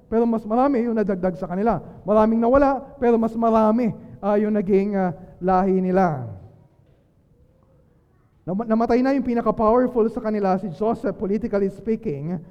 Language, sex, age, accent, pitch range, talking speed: Filipino, male, 20-39, native, 190-235 Hz, 140 wpm